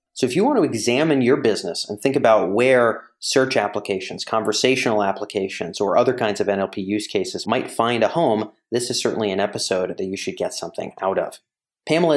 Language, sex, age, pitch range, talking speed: English, male, 30-49, 105-130 Hz, 195 wpm